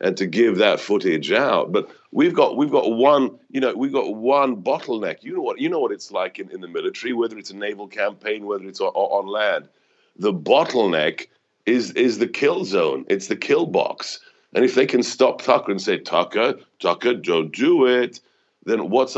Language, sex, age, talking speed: English, male, 50-69, 205 wpm